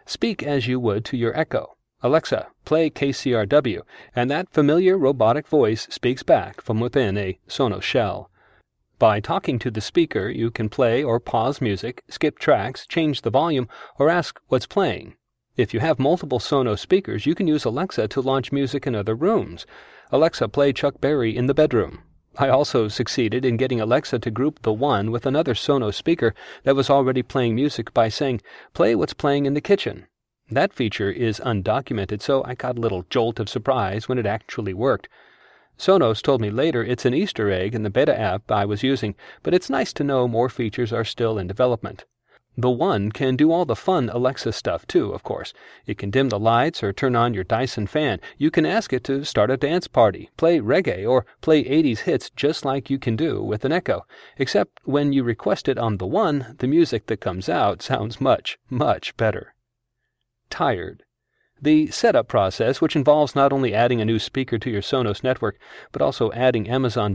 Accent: American